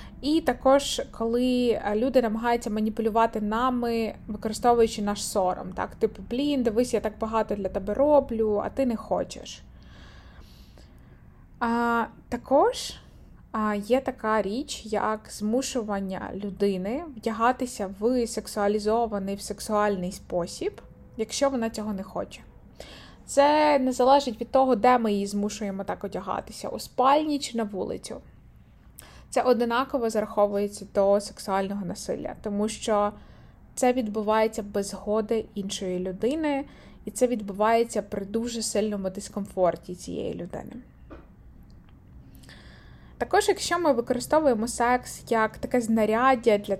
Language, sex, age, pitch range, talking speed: Ukrainian, female, 20-39, 200-245 Hz, 120 wpm